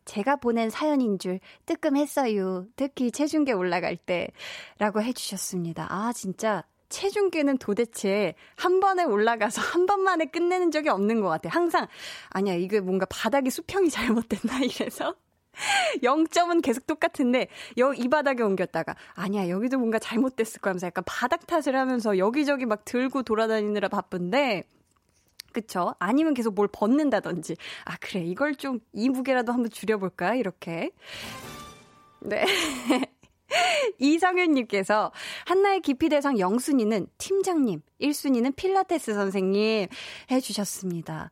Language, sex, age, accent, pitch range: Korean, female, 20-39, native, 200-300 Hz